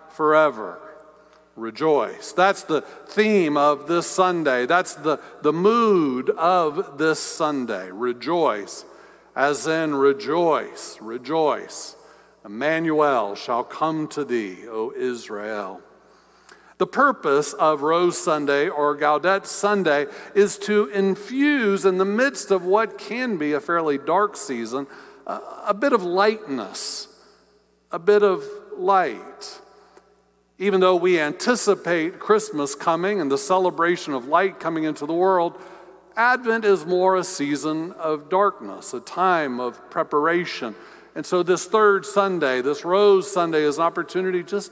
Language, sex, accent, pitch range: English, male, American, 155-205 Hz